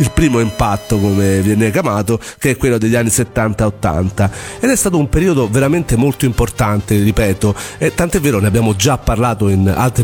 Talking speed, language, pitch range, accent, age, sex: 180 wpm, Italian, 105-140 Hz, native, 40-59, male